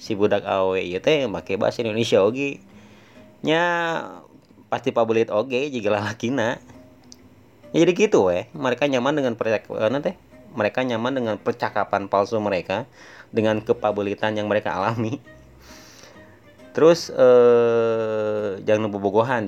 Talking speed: 125 wpm